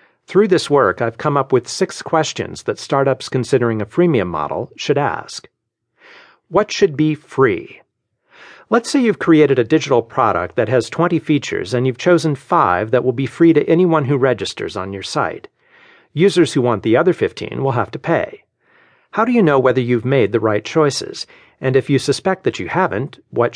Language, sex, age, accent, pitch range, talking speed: English, male, 50-69, American, 125-175 Hz, 190 wpm